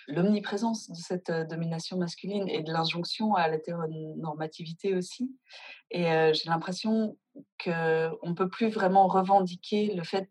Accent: French